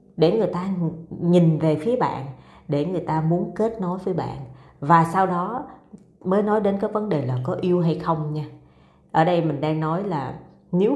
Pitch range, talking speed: 150-205 Hz, 205 wpm